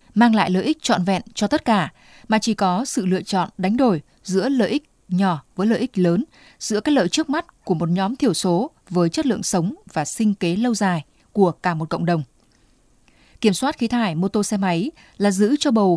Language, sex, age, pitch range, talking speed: Vietnamese, female, 20-39, 185-235 Hz, 230 wpm